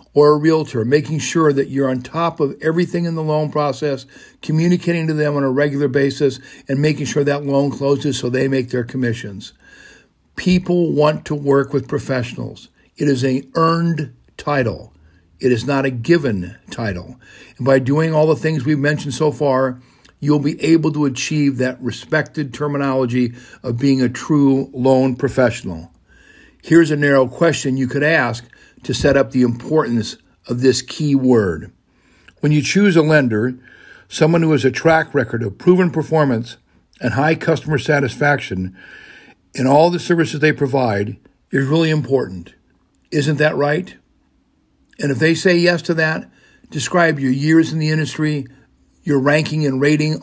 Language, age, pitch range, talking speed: English, 50-69, 130-155 Hz, 165 wpm